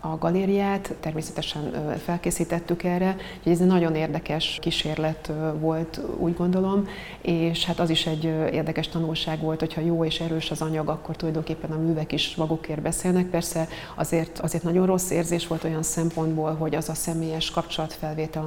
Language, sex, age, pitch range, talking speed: Hungarian, female, 30-49, 155-170 Hz, 160 wpm